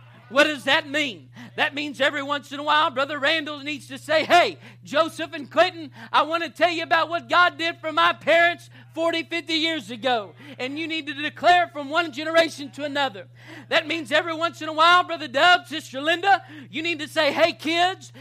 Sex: male